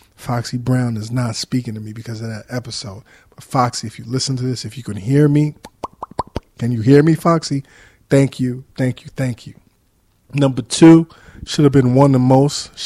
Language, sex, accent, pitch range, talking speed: English, male, American, 115-135 Hz, 195 wpm